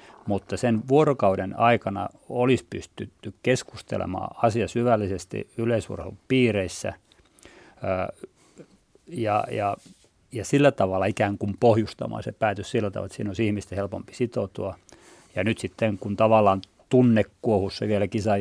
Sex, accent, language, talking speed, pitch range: male, native, Finnish, 125 wpm, 95-115 Hz